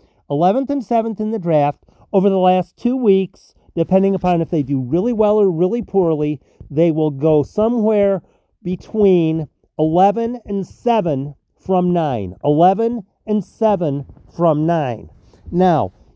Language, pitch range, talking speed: English, 160-210 Hz, 135 wpm